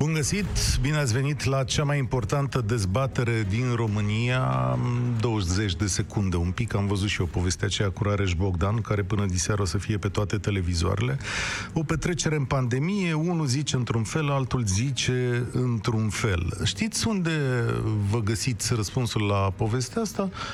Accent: native